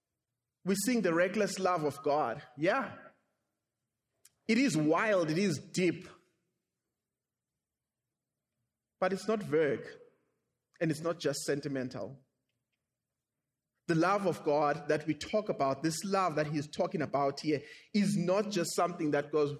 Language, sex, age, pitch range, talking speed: English, male, 30-49, 135-185 Hz, 140 wpm